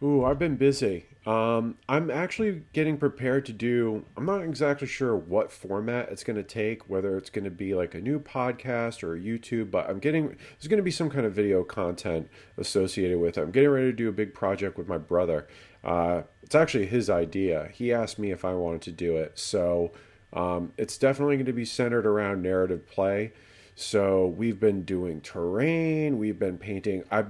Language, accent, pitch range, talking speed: English, American, 90-125 Hz, 205 wpm